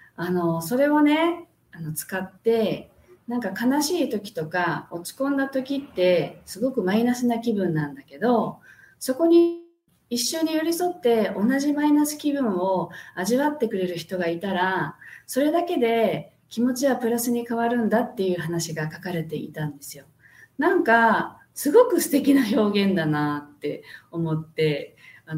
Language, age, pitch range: Japanese, 40-59, 185-285 Hz